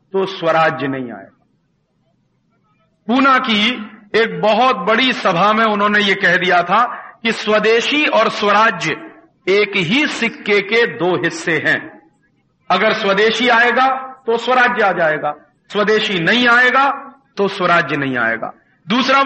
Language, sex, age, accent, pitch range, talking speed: Hindi, male, 50-69, native, 180-235 Hz, 120 wpm